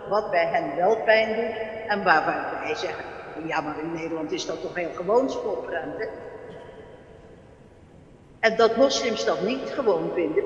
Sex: female